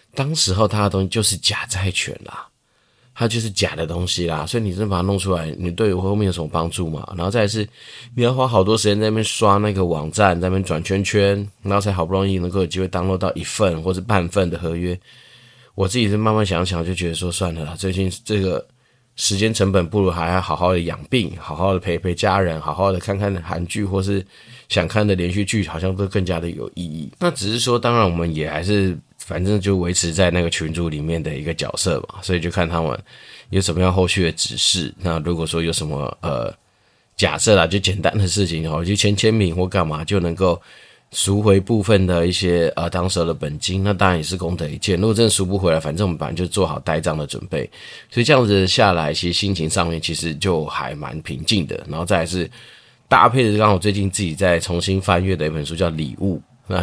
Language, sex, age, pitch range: Chinese, male, 20-39, 85-105 Hz